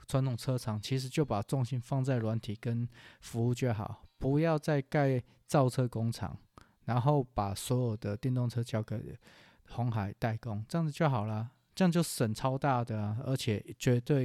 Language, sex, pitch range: Chinese, male, 110-145 Hz